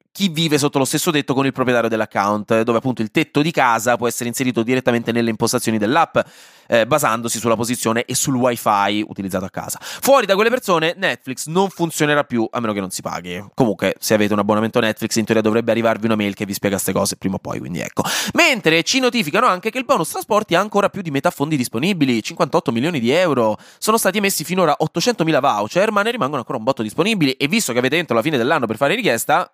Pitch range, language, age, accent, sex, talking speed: 110-175 Hz, Italian, 20-39, native, male, 230 wpm